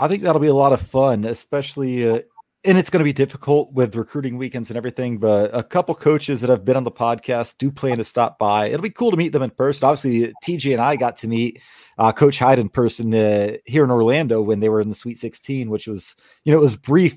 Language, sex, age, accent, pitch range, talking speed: English, male, 30-49, American, 115-150 Hz, 260 wpm